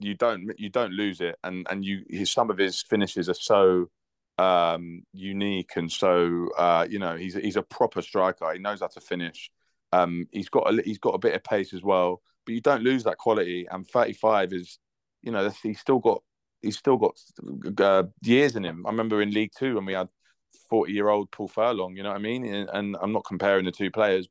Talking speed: 225 wpm